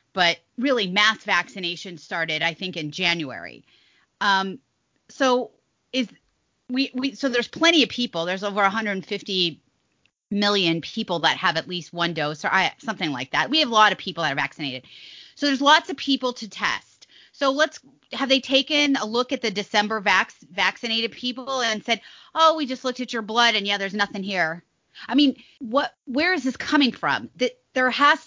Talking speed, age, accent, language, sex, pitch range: 190 wpm, 30-49, American, English, female, 190-260 Hz